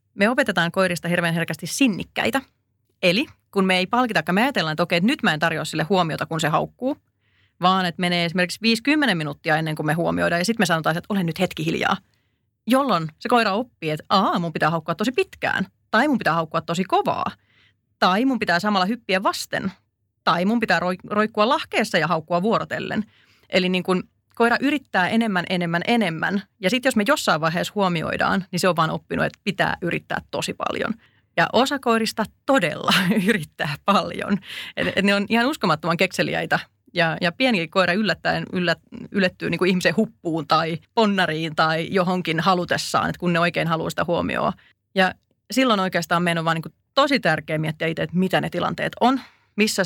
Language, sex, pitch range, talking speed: Finnish, female, 165-220 Hz, 185 wpm